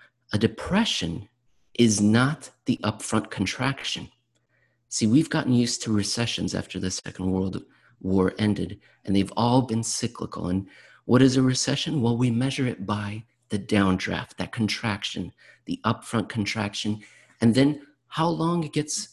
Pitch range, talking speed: 95-120 Hz, 145 wpm